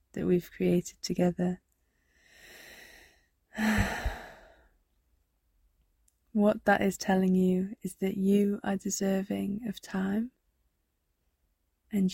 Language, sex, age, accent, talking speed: English, female, 20-39, British, 85 wpm